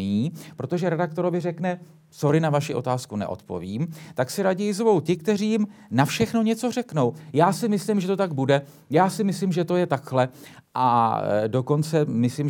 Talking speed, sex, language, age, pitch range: 175 wpm, male, Slovak, 40-59, 130-175 Hz